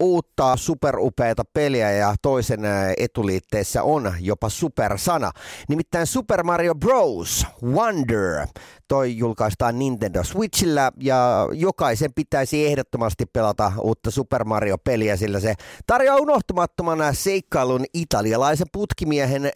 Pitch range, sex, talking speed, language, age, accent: 115-170 Hz, male, 100 wpm, Finnish, 30-49, native